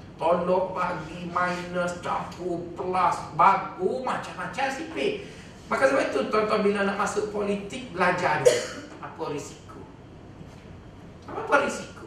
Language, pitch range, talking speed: Malay, 175-245 Hz, 110 wpm